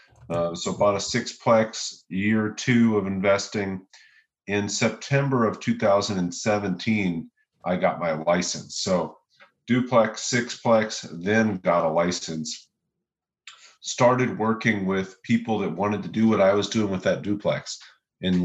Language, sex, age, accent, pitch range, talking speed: English, male, 40-59, American, 90-110 Hz, 130 wpm